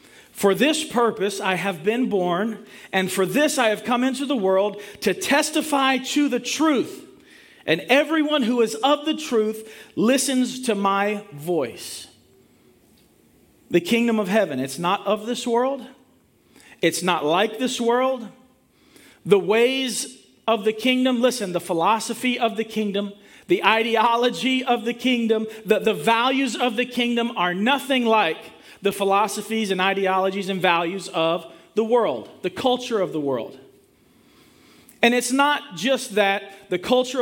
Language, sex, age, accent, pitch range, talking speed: English, male, 40-59, American, 205-260 Hz, 150 wpm